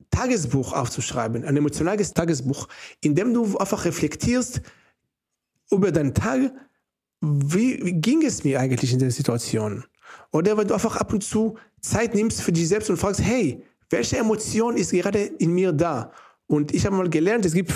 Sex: male